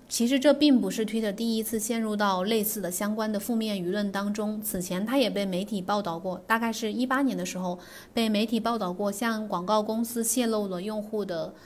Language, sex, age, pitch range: Chinese, female, 20-39, 200-250 Hz